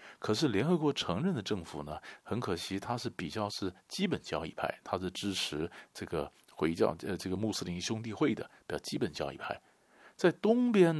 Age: 50-69